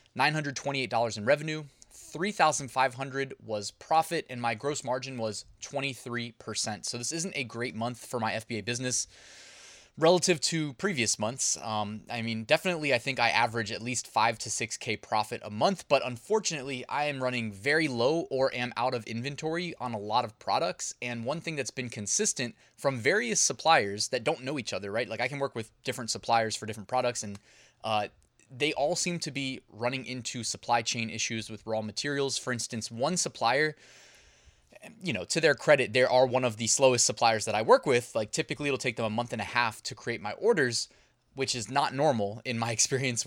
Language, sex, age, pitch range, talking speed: English, male, 20-39, 115-140 Hz, 195 wpm